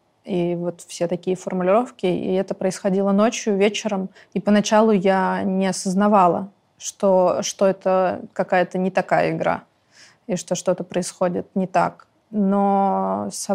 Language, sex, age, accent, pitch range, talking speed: Russian, female, 20-39, native, 185-210 Hz, 135 wpm